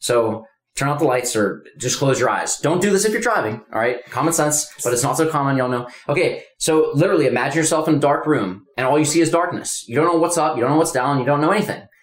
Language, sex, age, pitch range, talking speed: English, male, 20-39, 105-140 Hz, 280 wpm